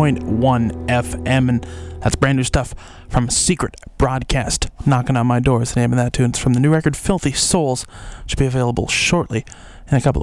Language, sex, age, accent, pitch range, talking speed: English, male, 20-39, American, 115-140 Hz, 195 wpm